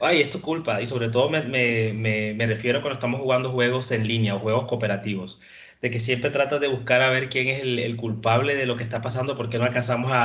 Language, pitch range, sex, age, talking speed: Spanish, 115-140 Hz, male, 30-49, 260 wpm